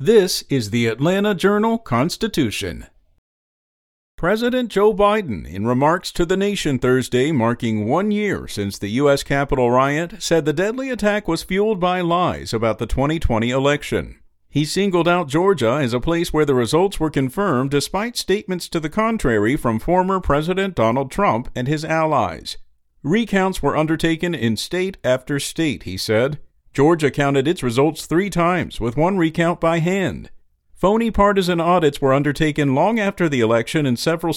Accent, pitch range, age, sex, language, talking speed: American, 125-180 Hz, 50-69, male, English, 155 wpm